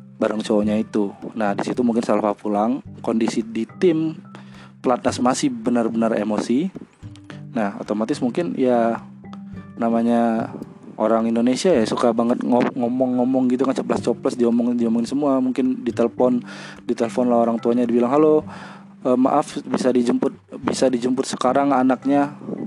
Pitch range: 105-125 Hz